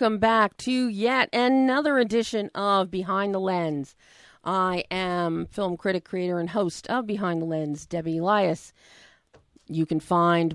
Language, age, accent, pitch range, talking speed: English, 40-59, American, 175-230 Hz, 150 wpm